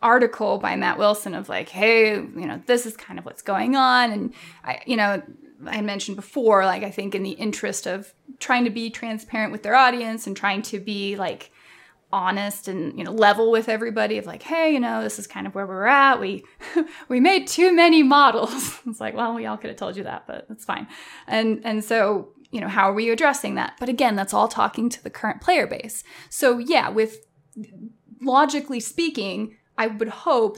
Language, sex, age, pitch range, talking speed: English, female, 20-39, 210-255 Hz, 210 wpm